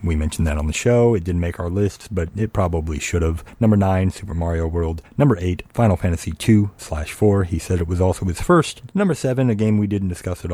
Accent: American